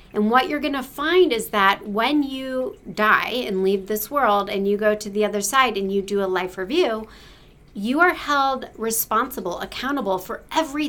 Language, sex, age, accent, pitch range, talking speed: English, female, 40-59, American, 205-265 Hz, 195 wpm